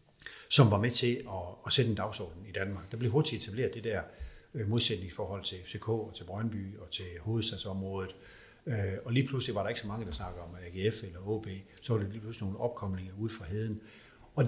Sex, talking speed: male, 210 wpm